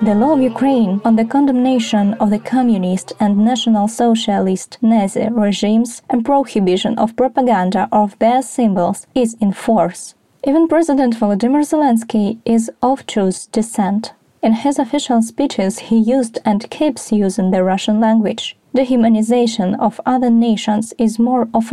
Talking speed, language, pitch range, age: 145 wpm, English, 210-255 Hz, 20-39